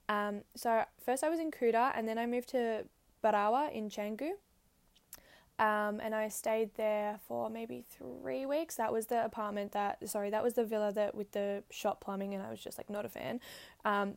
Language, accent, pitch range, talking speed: English, Australian, 210-245 Hz, 205 wpm